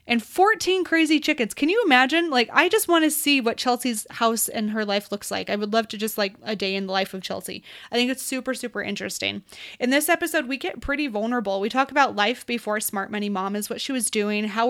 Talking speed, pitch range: 245 wpm, 210-255 Hz